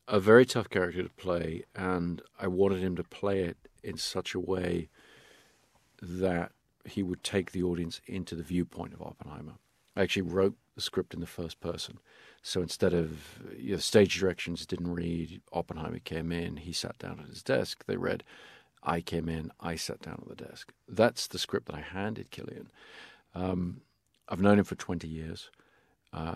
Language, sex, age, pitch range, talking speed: English, male, 50-69, 85-95 Hz, 180 wpm